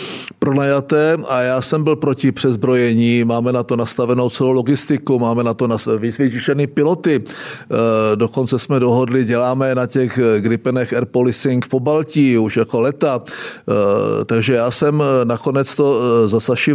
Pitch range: 120-140 Hz